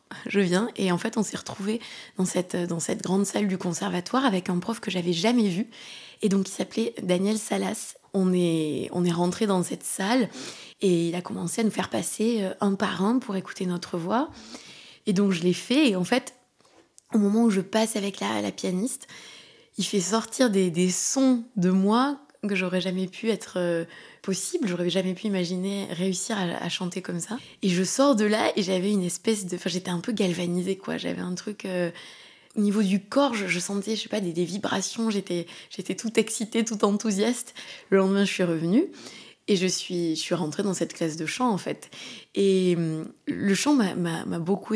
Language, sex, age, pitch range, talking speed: French, female, 20-39, 180-220 Hz, 205 wpm